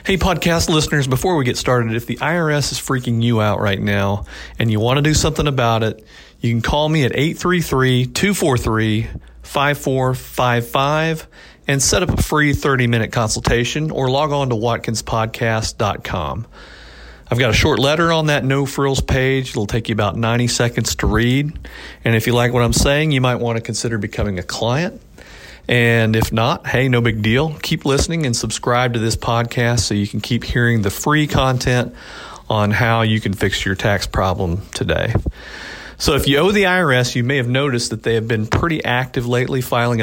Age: 40-59